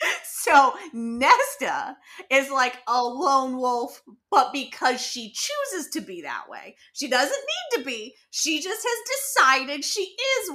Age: 20-39